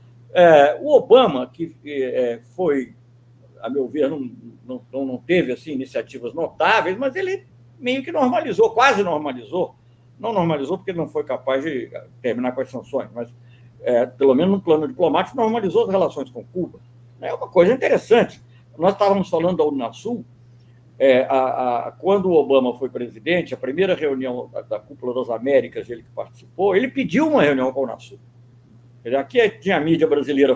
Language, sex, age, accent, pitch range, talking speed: English, male, 60-79, Brazilian, 125-205 Hz, 165 wpm